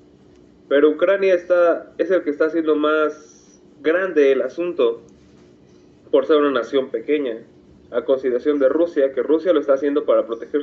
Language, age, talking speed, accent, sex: Spanish, 20-39, 160 wpm, Mexican, male